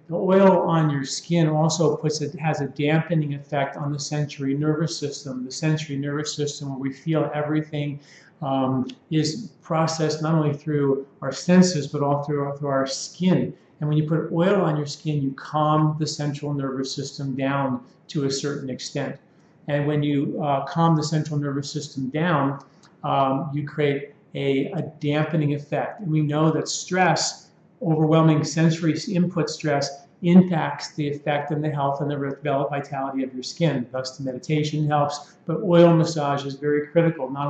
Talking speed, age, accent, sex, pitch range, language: 175 wpm, 40-59, American, male, 140-160 Hz, English